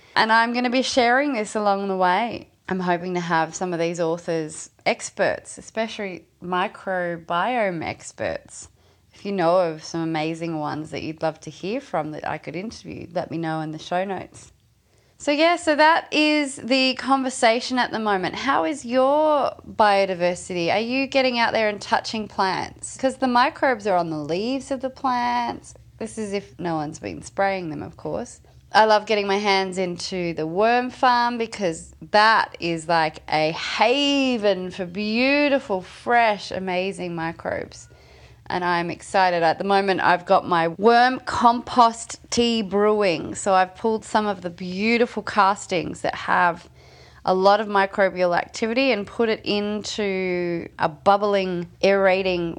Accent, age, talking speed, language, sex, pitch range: Australian, 20-39, 160 wpm, English, female, 175-235 Hz